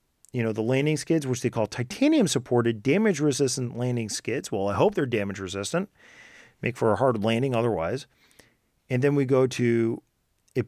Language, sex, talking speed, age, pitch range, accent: English, male, 165 wpm, 40-59, 120-160 Hz, American